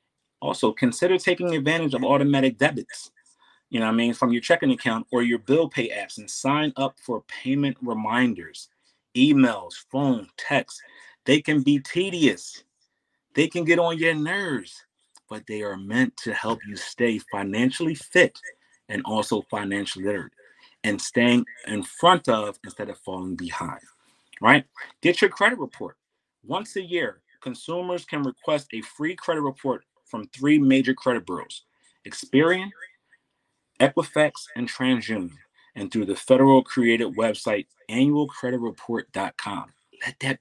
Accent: American